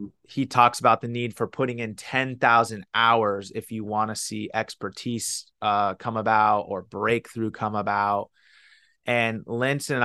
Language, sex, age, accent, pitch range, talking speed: English, male, 30-49, American, 110-125 Hz, 160 wpm